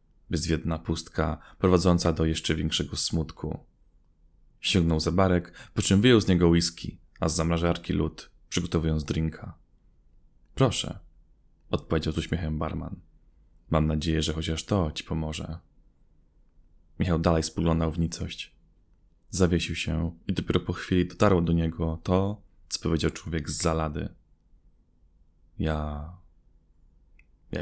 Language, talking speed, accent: Polish, 120 wpm, native